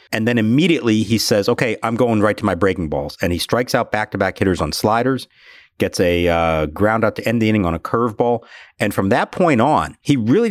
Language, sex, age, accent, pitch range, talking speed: English, male, 50-69, American, 100-130 Hz, 230 wpm